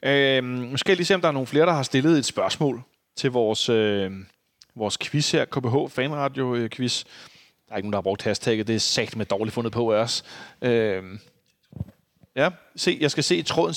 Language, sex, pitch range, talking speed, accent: Danish, male, 120-160 Hz, 210 wpm, native